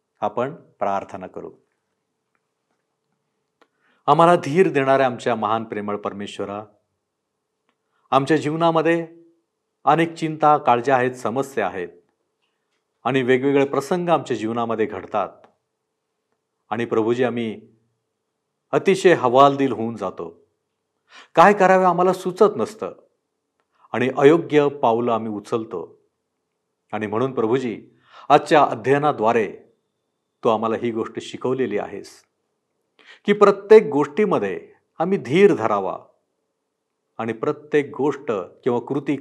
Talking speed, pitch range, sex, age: 95 wpm, 115-170 Hz, male, 50-69